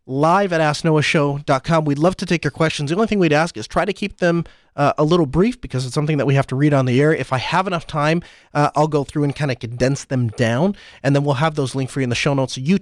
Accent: American